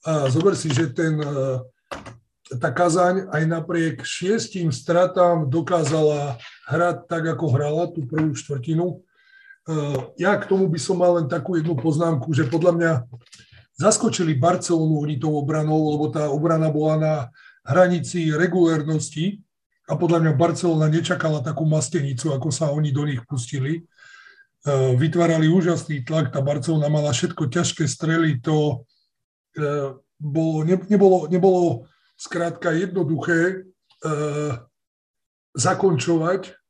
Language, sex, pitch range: Slovak, male, 145-170 Hz